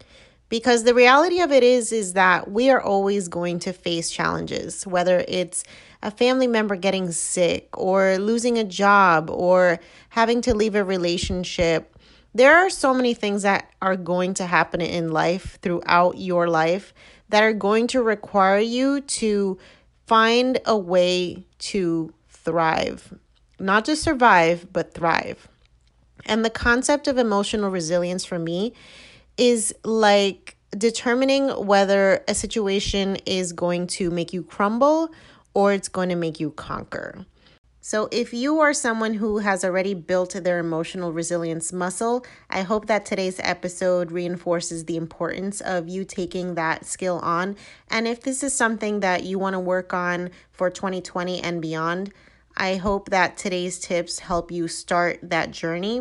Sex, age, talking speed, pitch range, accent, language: female, 30-49, 155 wpm, 175-220 Hz, American, English